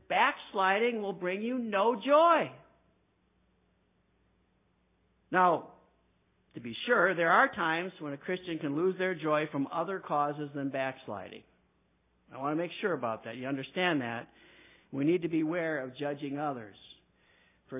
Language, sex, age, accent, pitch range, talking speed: English, male, 60-79, American, 145-195 Hz, 145 wpm